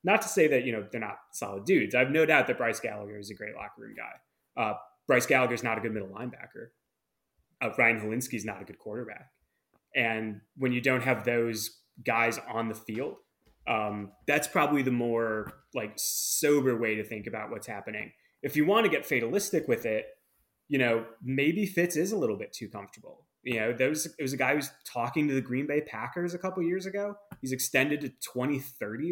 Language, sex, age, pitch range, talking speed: English, male, 20-39, 115-145 Hz, 215 wpm